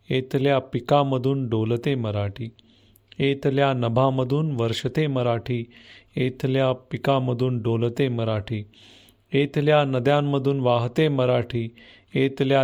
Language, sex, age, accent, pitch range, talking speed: Marathi, male, 40-59, native, 115-140 Hz, 85 wpm